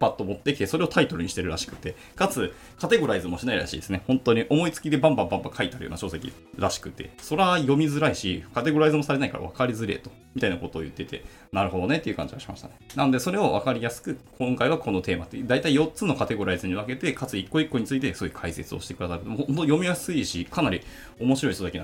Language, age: Japanese, 20-39